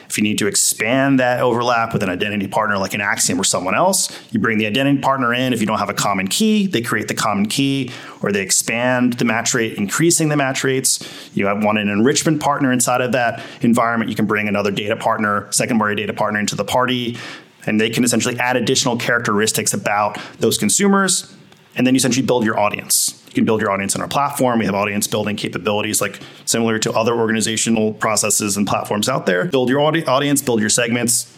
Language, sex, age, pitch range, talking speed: English, male, 30-49, 105-135 Hz, 215 wpm